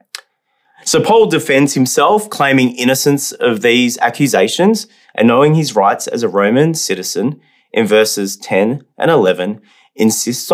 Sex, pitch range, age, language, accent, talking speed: male, 130-210 Hz, 30-49, English, Australian, 130 wpm